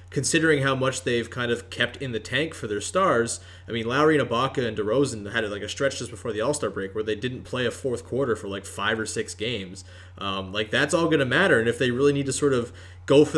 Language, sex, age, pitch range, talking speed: English, male, 20-39, 110-135 Hz, 265 wpm